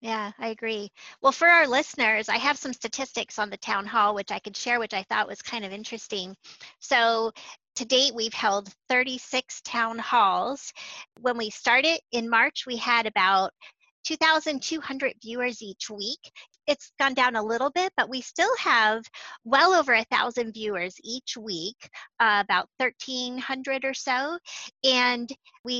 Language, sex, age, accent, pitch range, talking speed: English, female, 30-49, American, 215-255 Hz, 150 wpm